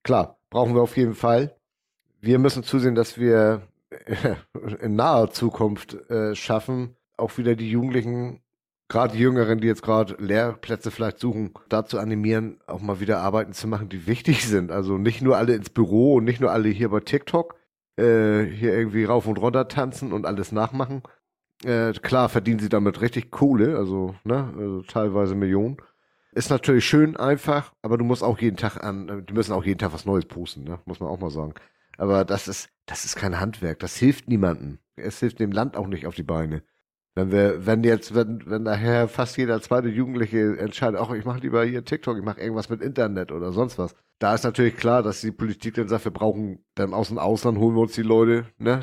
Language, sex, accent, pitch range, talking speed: German, male, German, 105-120 Hz, 205 wpm